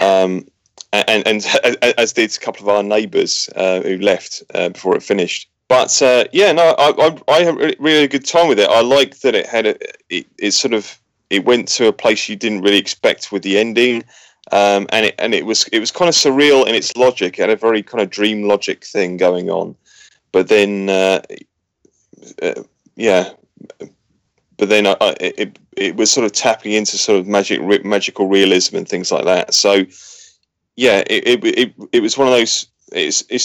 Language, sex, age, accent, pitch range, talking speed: English, male, 30-49, British, 100-140 Hz, 200 wpm